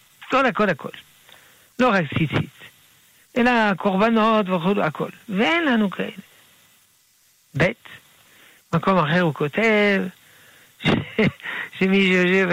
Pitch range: 155-215 Hz